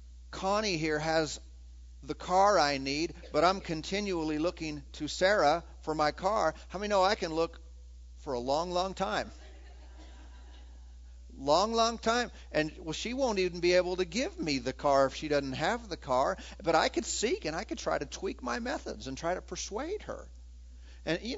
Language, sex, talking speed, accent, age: English, male, 190 wpm, American, 50-69